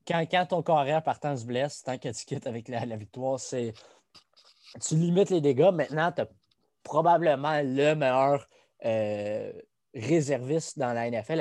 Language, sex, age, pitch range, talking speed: French, male, 20-39, 120-145 Hz, 165 wpm